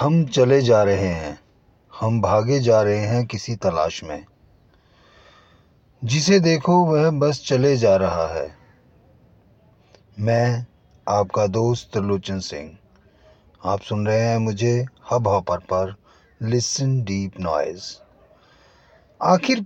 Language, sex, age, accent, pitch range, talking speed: Hindi, male, 30-49, native, 105-165 Hz, 120 wpm